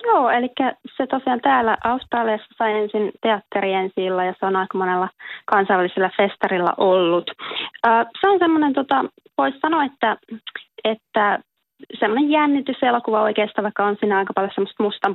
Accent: native